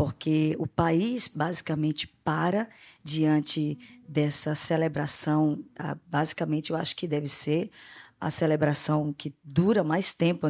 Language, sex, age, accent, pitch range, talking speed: Portuguese, female, 20-39, Brazilian, 155-180 Hz, 115 wpm